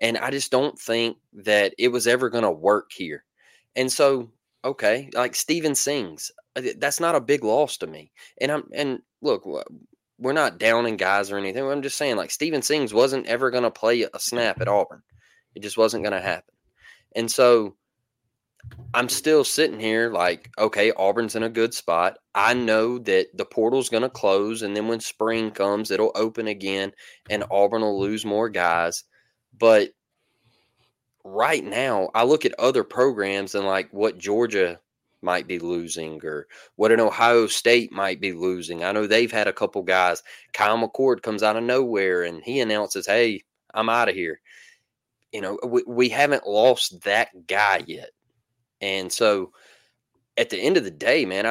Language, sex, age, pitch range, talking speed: English, male, 20-39, 105-130 Hz, 180 wpm